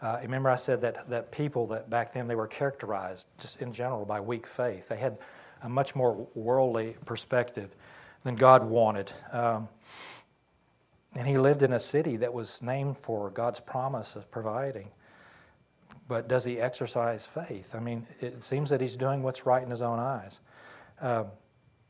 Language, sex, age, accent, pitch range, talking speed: English, male, 40-59, American, 115-130 Hz, 175 wpm